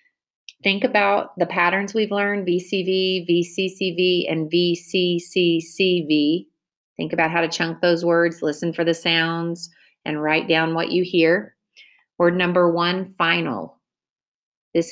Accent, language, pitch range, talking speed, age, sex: American, English, 155-180 Hz, 130 wpm, 30-49, female